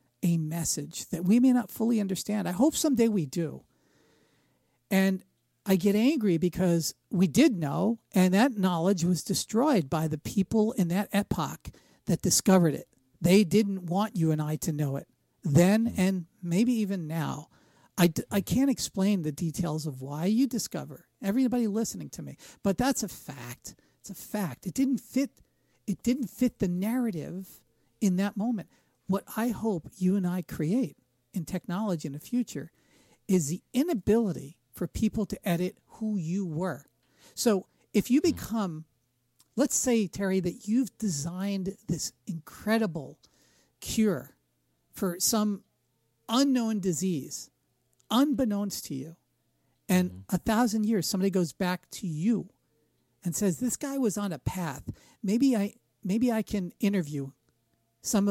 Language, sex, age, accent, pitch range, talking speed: English, male, 50-69, American, 160-220 Hz, 150 wpm